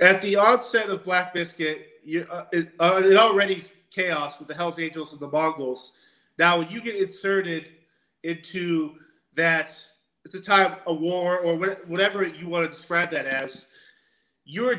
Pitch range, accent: 155-195 Hz, American